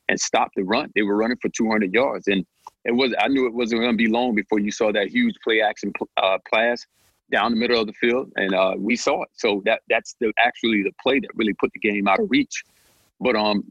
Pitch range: 105-140 Hz